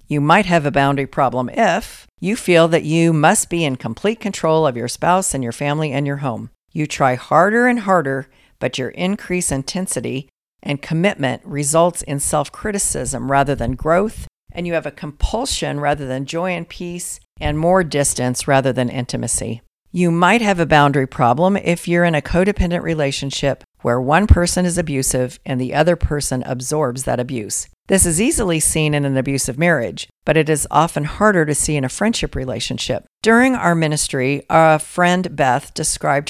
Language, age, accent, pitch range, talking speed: English, 50-69, American, 135-175 Hz, 180 wpm